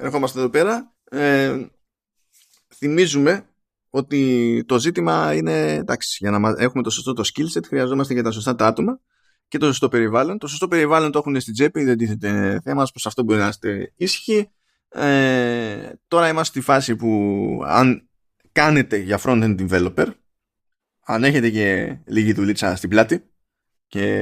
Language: Greek